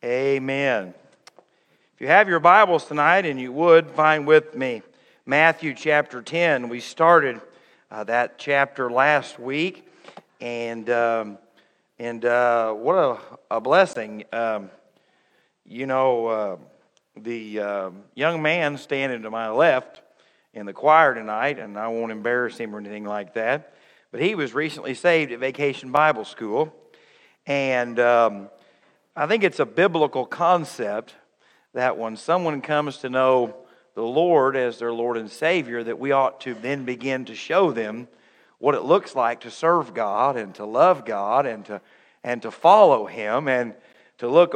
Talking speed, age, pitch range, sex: 155 wpm, 50-69, 120-160 Hz, male